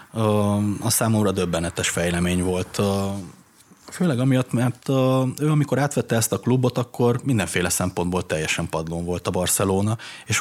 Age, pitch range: 30-49, 100-125 Hz